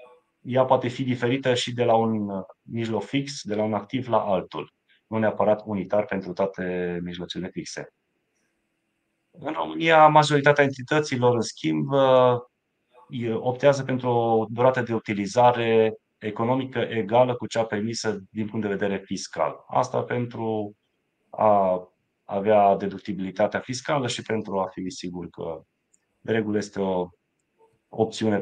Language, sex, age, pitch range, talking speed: Romanian, male, 30-49, 100-125 Hz, 130 wpm